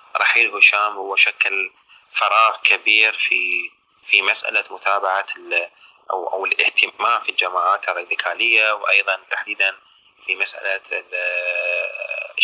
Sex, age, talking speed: male, 30-49, 95 wpm